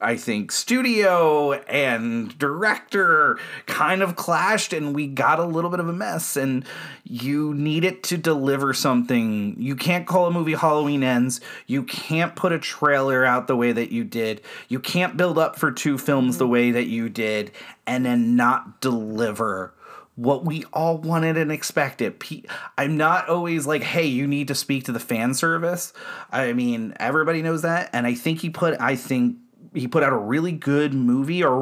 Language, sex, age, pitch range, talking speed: English, male, 30-49, 125-170 Hz, 185 wpm